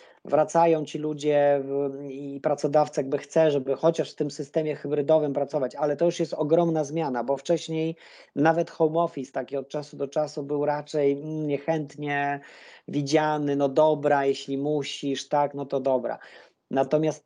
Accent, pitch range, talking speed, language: native, 140-160 Hz, 150 wpm, Polish